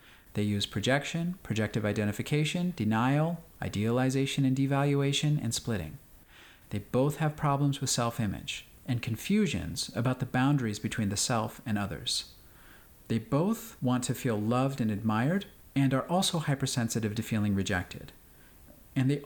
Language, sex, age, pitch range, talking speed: English, male, 40-59, 110-145 Hz, 135 wpm